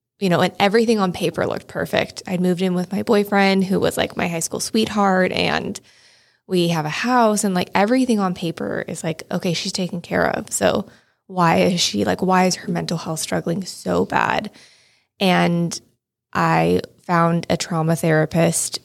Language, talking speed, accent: English, 180 wpm, American